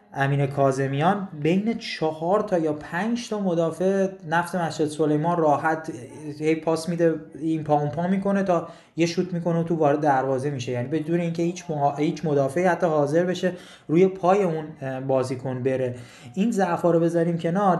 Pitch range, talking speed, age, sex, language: 140-170 Hz, 160 wpm, 20-39, male, Persian